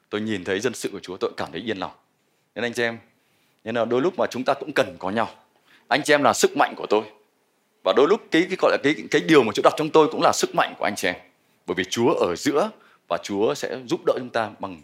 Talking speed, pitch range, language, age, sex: 285 wpm, 105-145 Hz, Vietnamese, 20-39, male